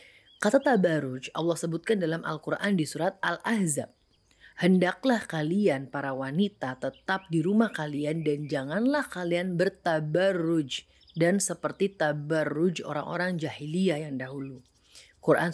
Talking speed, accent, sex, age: 110 wpm, native, female, 30-49